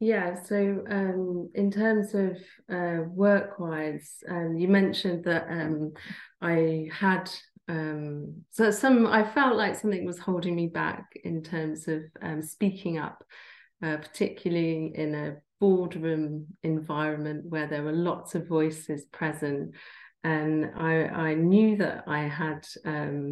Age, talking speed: 30-49, 135 wpm